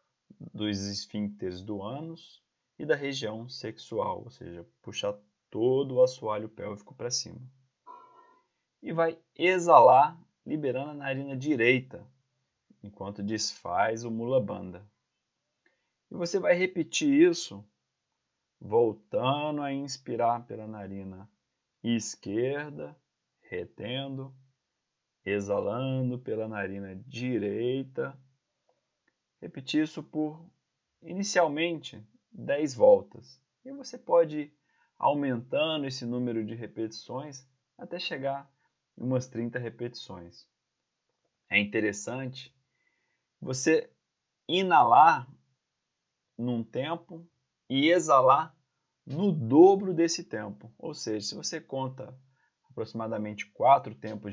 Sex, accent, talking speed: male, Brazilian, 95 wpm